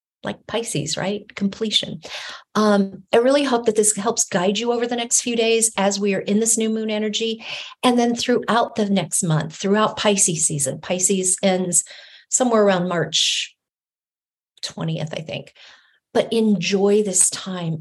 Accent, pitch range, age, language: American, 175-210 Hz, 40-59, English